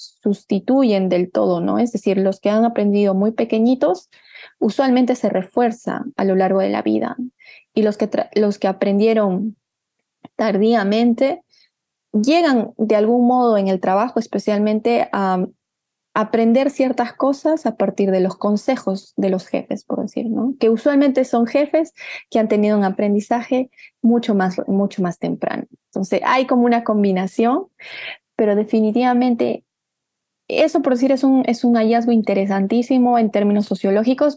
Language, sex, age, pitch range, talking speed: Spanish, female, 20-39, 195-240 Hz, 150 wpm